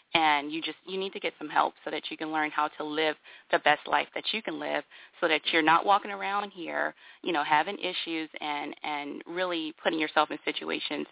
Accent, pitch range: American, 150-175 Hz